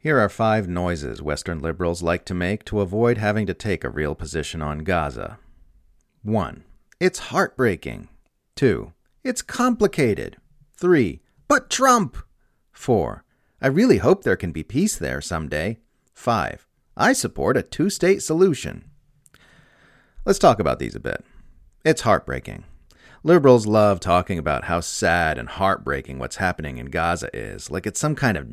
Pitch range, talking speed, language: 80-120 Hz, 150 wpm, English